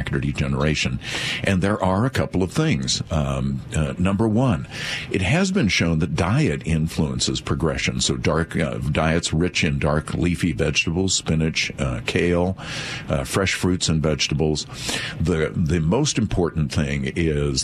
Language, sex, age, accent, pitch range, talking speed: English, male, 50-69, American, 75-95 Hz, 145 wpm